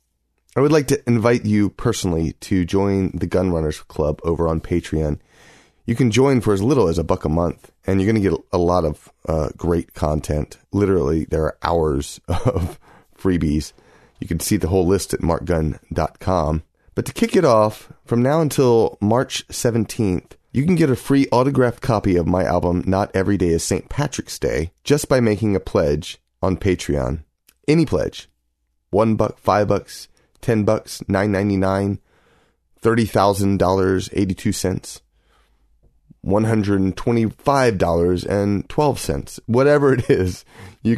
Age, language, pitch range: 30-49, English, 85-115 Hz